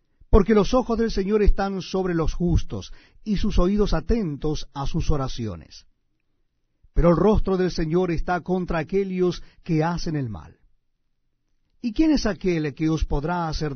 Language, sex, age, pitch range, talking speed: Spanish, male, 50-69, 155-215 Hz, 155 wpm